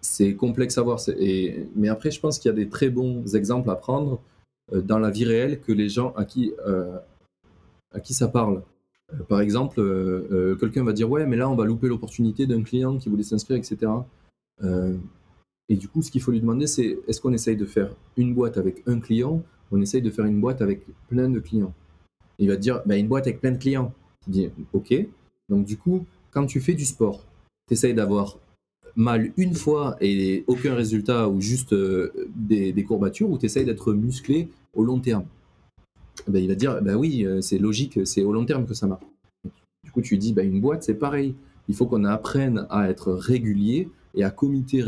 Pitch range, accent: 100-130 Hz, French